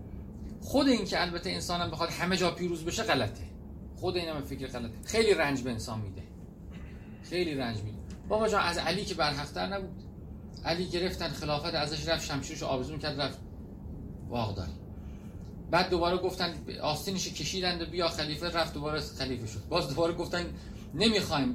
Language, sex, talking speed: Persian, male, 155 wpm